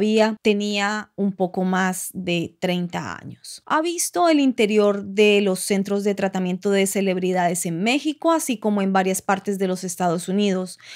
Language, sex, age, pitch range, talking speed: Spanish, female, 20-39, 195-245 Hz, 160 wpm